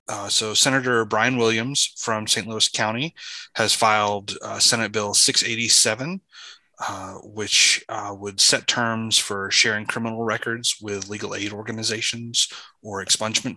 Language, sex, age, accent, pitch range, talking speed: English, male, 30-49, American, 105-115 Hz, 135 wpm